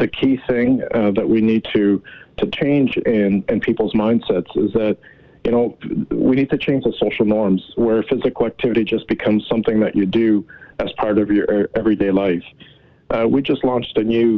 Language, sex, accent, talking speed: English, male, American, 190 wpm